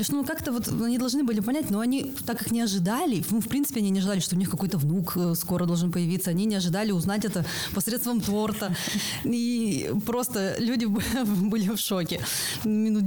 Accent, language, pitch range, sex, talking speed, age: native, Russian, 175-225 Hz, female, 180 wpm, 20-39